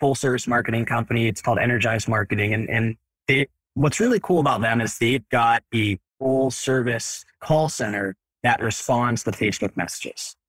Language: English